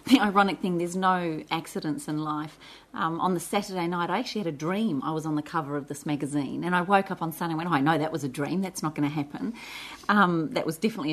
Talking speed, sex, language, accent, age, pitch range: 265 wpm, female, English, Australian, 30-49, 155-200 Hz